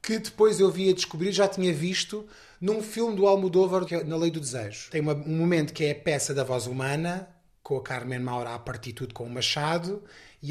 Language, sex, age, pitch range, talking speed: Portuguese, male, 20-39, 135-180 Hz, 225 wpm